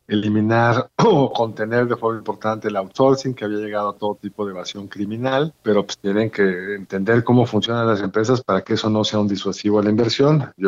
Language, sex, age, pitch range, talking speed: Spanish, male, 50-69, 105-135 Hz, 210 wpm